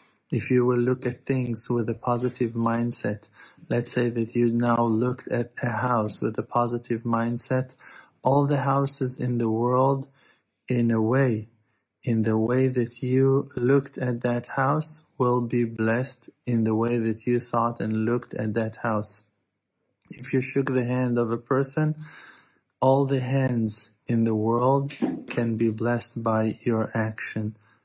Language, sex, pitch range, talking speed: English, male, 110-125 Hz, 160 wpm